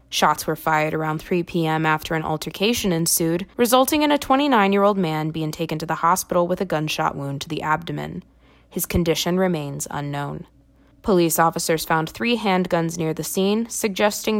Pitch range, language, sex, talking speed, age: 160-195 Hz, English, female, 165 wpm, 20-39